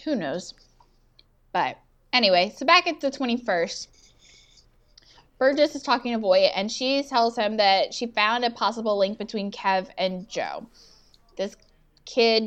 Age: 10-29